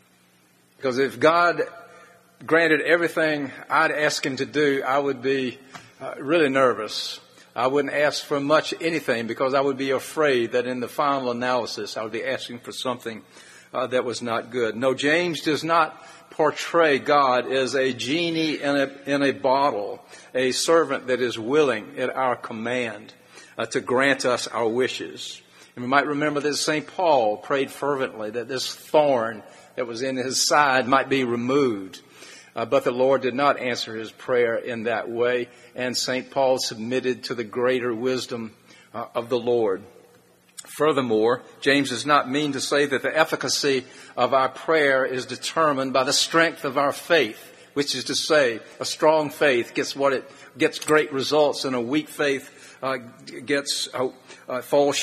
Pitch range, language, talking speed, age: 125-145 Hz, English, 170 wpm, 50-69